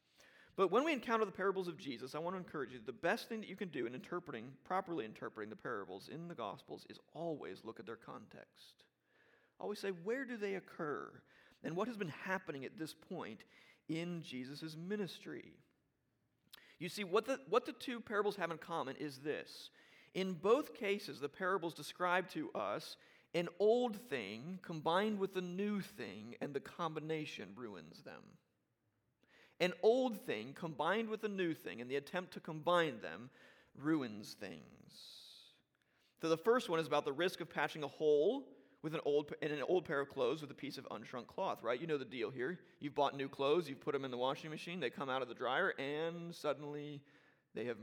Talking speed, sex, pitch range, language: 195 wpm, male, 150-195 Hz, English